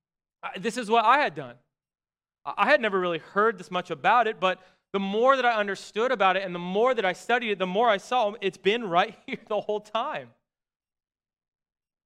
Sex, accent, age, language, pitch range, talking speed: male, American, 30-49, English, 160-200 Hz, 205 wpm